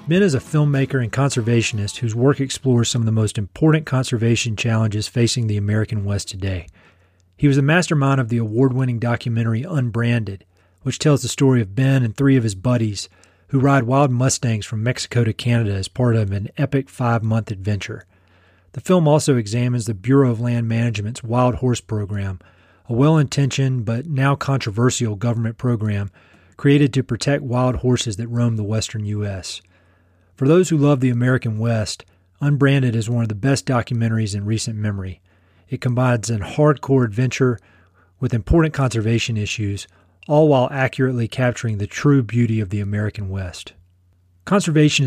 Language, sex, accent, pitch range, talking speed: English, male, American, 105-130 Hz, 165 wpm